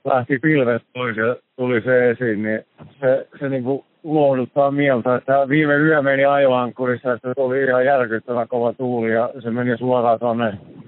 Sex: male